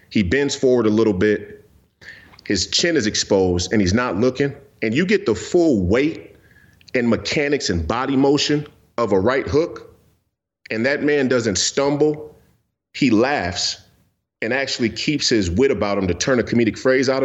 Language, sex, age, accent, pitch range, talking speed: English, male, 40-59, American, 105-140 Hz, 170 wpm